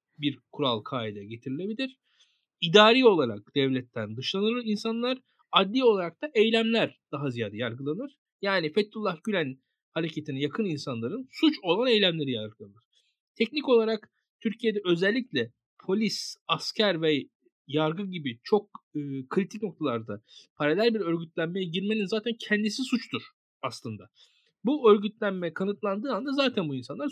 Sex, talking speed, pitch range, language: male, 120 wpm, 155-235 Hz, Turkish